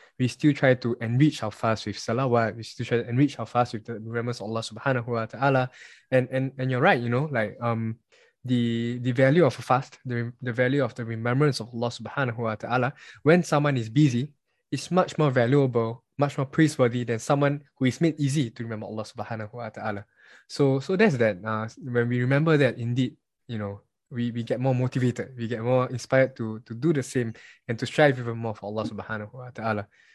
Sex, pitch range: male, 115-135 Hz